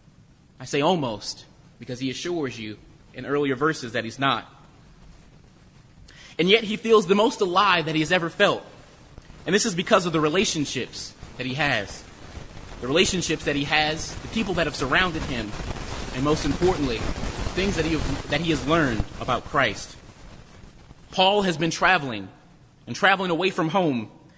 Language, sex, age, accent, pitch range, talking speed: English, male, 30-49, American, 140-185 Hz, 165 wpm